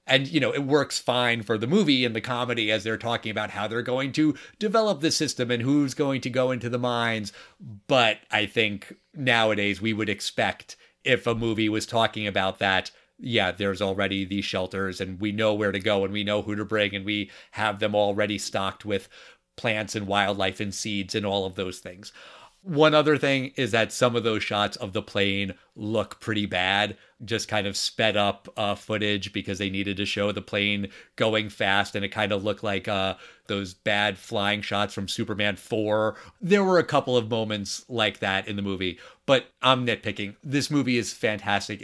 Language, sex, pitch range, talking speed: English, male, 100-125 Hz, 205 wpm